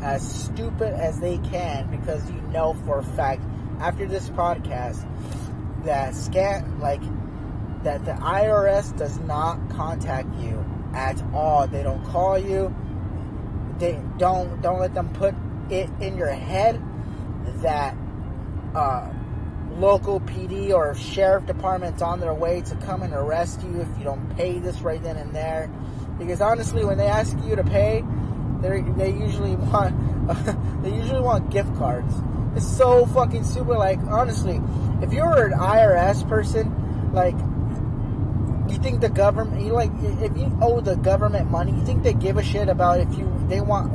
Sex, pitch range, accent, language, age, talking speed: male, 100-120 Hz, American, English, 20-39, 160 wpm